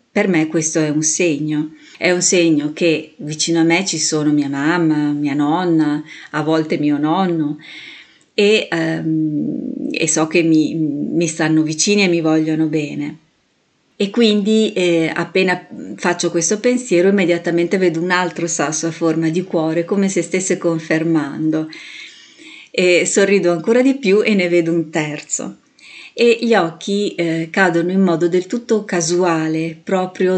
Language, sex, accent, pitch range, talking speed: Italian, female, native, 160-195 Hz, 150 wpm